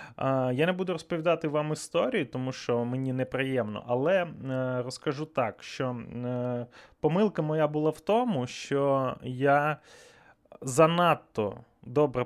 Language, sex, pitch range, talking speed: Ukrainian, male, 125-155 Hz, 115 wpm